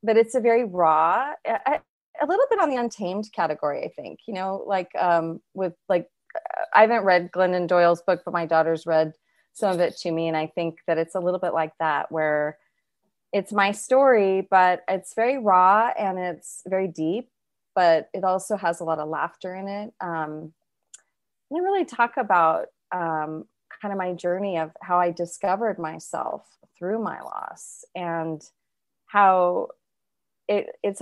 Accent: American